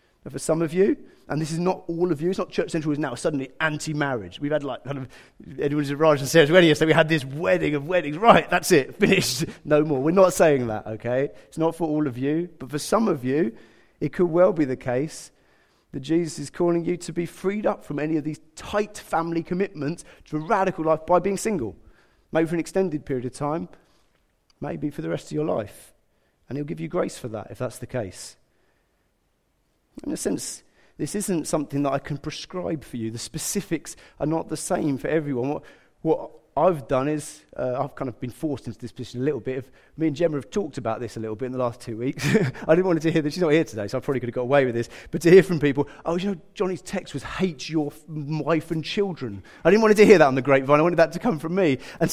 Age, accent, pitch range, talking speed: 30-49, British, 140-185 Hz, 250 wpm